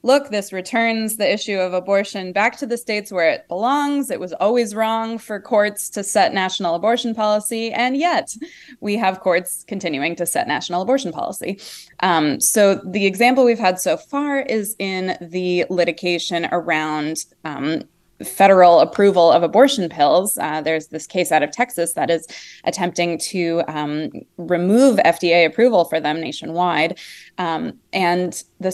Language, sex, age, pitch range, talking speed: English, female, 20-39, 170-220 Hz, 160 wpm